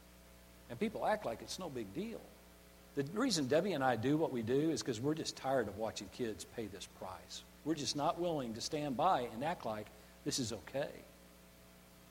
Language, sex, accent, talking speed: English, male, American, 205 wpm